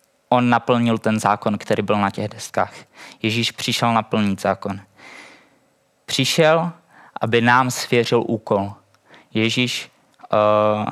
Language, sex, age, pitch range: Czech, male, 20-39, 110-125 Hz